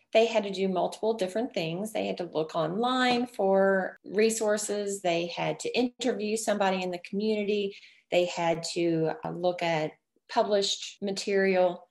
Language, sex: English, female